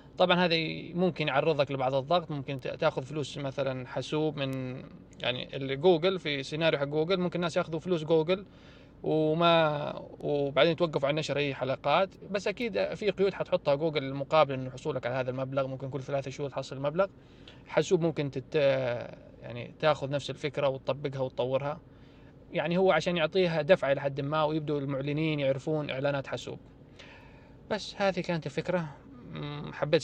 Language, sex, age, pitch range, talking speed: Arabic, male, 20-39, 135-165 Hz, 145 wpm